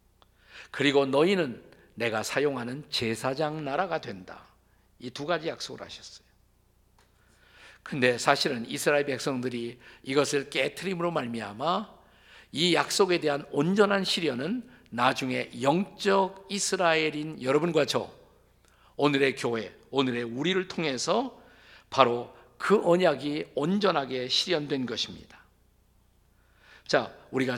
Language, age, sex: Korean, 50-69, male